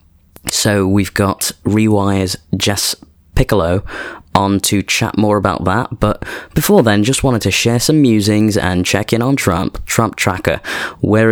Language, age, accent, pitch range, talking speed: English, 20-39, British, 90-110 Hz, 155 wpm